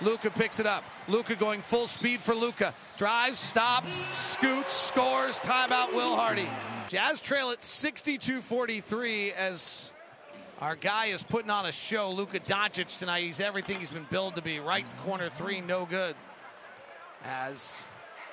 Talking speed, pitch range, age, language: 145 wpm, 185-225 Hz, 40-59, English